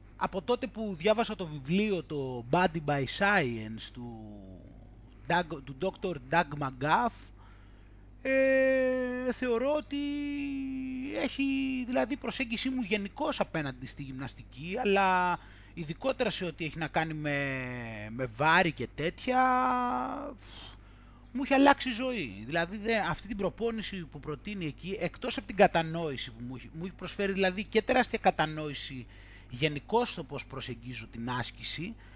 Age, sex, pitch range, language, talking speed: 20-39, male, 145-225 Hz, Greek, 130 wpm